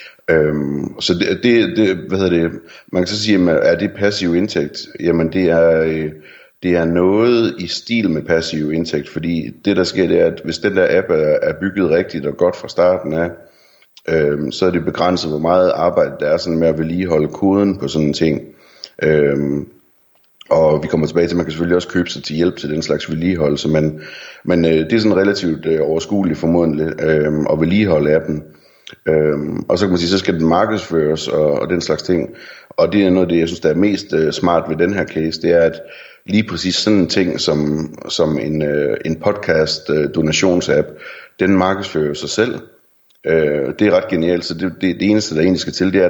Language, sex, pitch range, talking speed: Danish, male, 75-90 Hz, 215 wpm